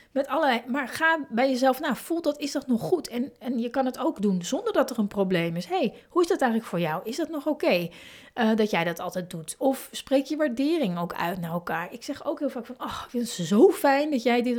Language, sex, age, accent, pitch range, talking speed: Dutch, female, 30-49, Dutch, 195-250 Hz, 280 wpm